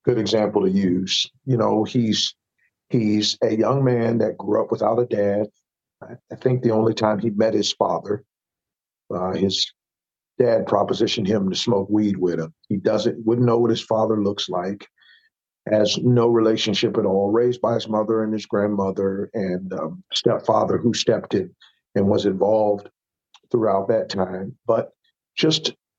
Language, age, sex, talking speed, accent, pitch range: English, 50-69, male, 165 wpm, American, 105-120 Hz